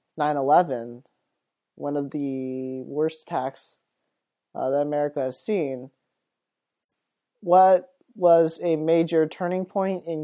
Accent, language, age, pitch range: American, English, 20-39, 145-180 Hz